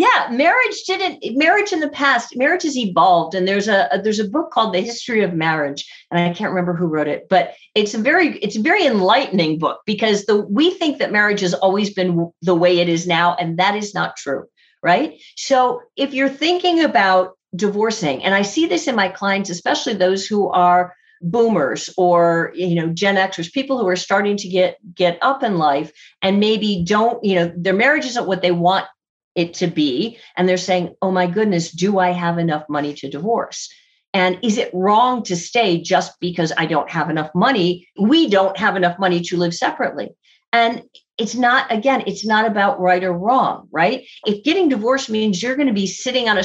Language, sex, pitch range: English, female, 175-250 Hz